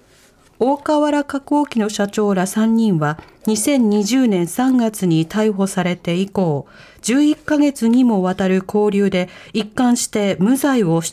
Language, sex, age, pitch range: Japanese, female, 40-59, 190-260 Hz